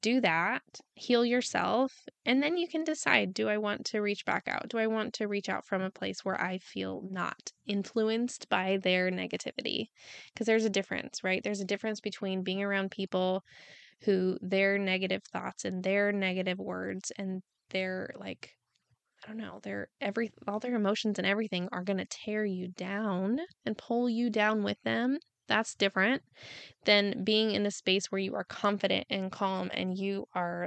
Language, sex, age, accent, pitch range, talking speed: English, female, 10-29, American, 185-225 Hz, 185 wpm